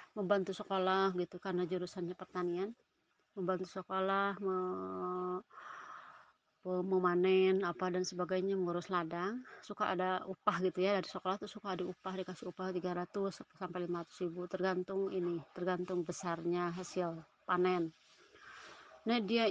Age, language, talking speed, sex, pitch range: 30-49, Indonesian, 125 wpm, female, 180-210 Hz